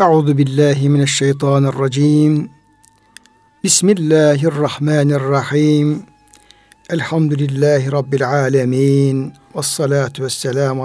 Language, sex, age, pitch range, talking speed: Turkish, male, 60-79, 140-160 Hz, 85 wpm